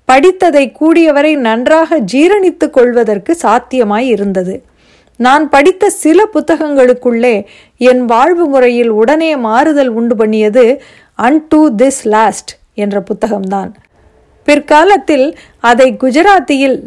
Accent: native